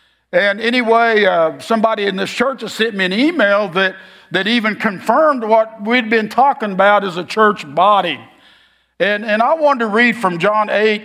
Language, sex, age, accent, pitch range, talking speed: English, male, 50-69, American, 185-225 Hz, 185 wpm